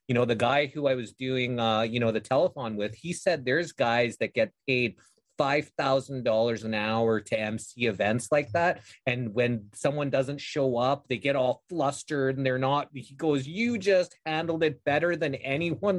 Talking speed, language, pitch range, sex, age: 200 wpm, English, 120-145 Hz, male, 30-49